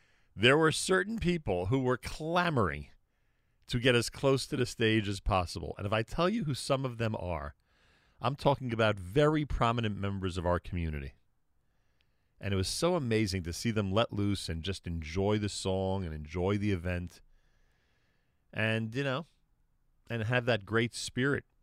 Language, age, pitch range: English, 40-59, 85-115 Hz